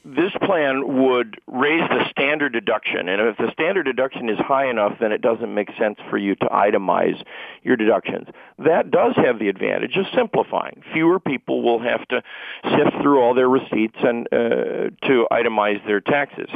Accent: American